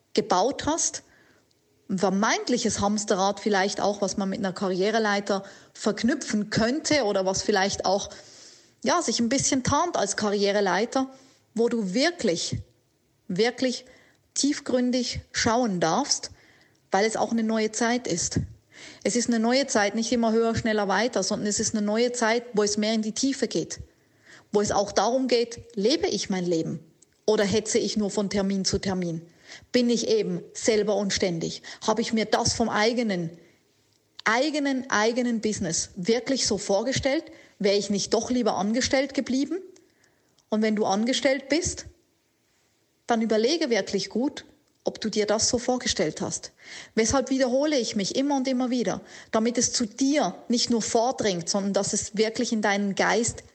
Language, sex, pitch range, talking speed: German, female, 200-250 Hz, 160 wpm